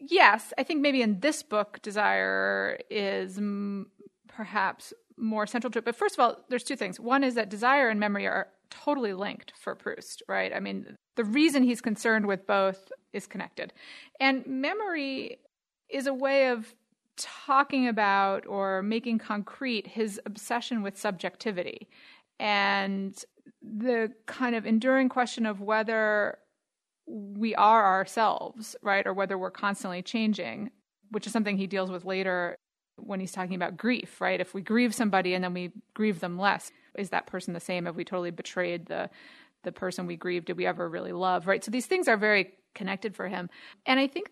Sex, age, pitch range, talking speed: female, 30-49, 195-245 Hz, 175 wpm